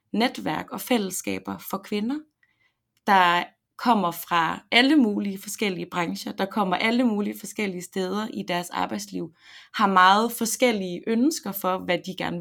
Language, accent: Danish, native